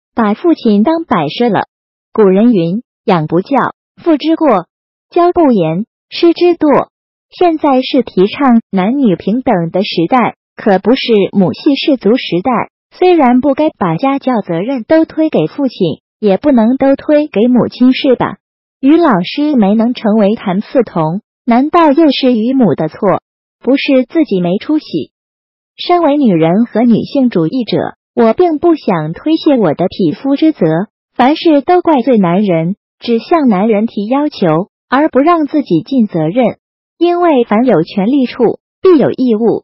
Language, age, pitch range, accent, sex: Chinese, 30-49, 200-285 Hz, native, female